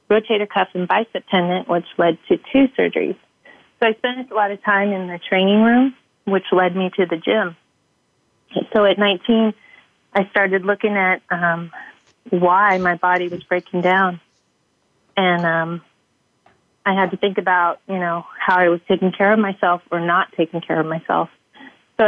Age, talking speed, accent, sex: 30-49, 175 wpm, American, female